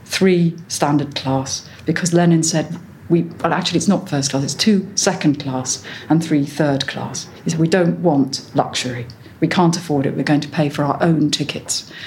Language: English